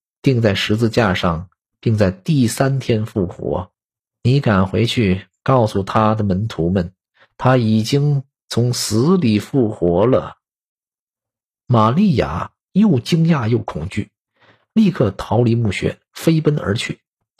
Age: 50-69